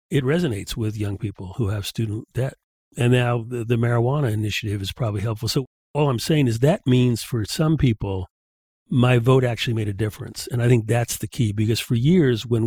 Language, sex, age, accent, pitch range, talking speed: English, male, 50-69, American, 110-135 Hz, 210 wpm